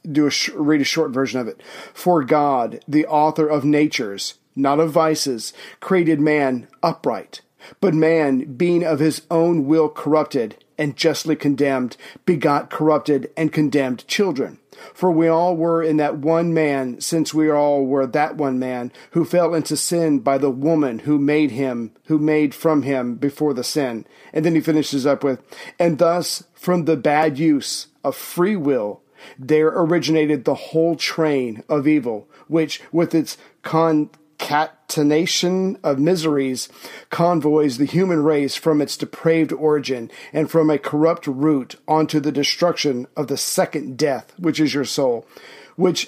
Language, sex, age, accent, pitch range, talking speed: English, male, 40-59, American, 145-165 Hz, 160 wpm